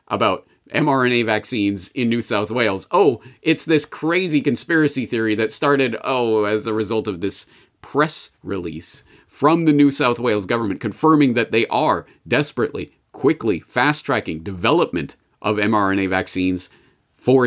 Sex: male